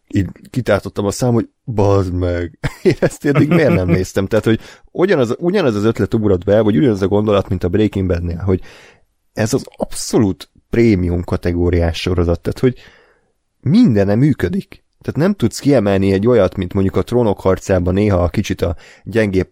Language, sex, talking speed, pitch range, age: Hungarian, male, 170 wpm, 90-110 Hz, 30-49